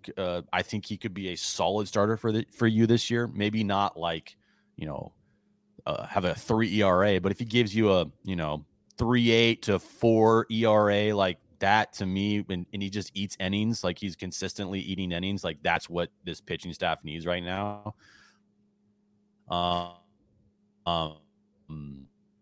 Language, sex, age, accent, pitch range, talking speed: English, male, 30-49, American, 90-110 Hz, 170 wpm